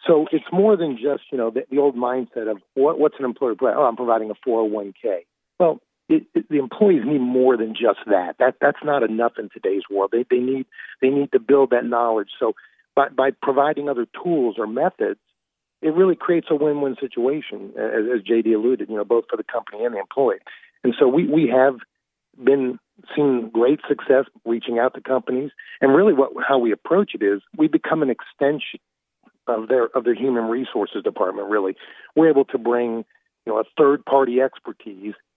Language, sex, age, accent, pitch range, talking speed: English, male, 50-69, American, 120-150 Hz, 200 wpm